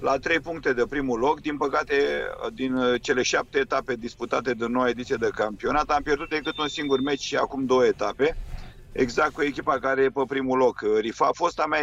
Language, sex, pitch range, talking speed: Romanian, male, 125-150 Hz, 205 wpm